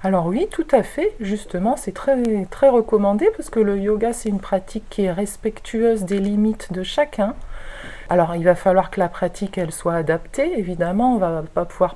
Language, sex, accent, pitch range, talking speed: French, female, French, 185-235 Hz, 195 wpm